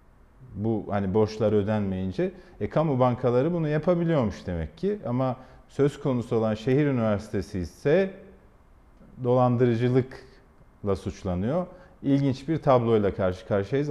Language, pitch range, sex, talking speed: Turkish, 105-130 Hz, male, 110 wpm